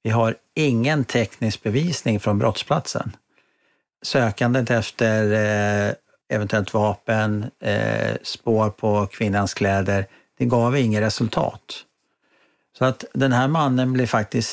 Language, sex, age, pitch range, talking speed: Swedish, male, 50-69, 100-125 Hz, 105 wpm